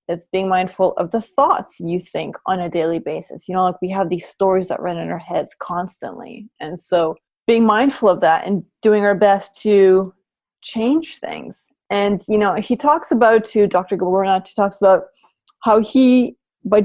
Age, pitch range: 30-49, 185-235 Hz